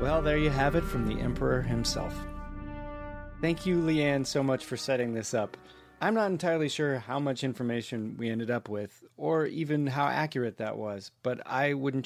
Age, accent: 30-49, American